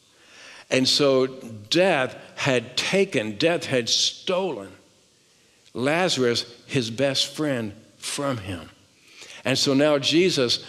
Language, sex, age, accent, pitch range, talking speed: English, male, 60-79, American, 110-135 Hz, 100 wpm